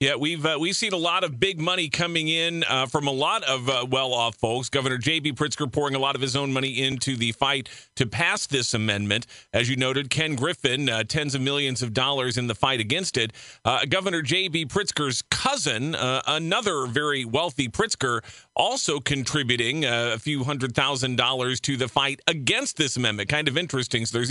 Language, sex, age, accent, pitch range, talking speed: English, male, 40-59, American, 130-160 Hz, 200 wpm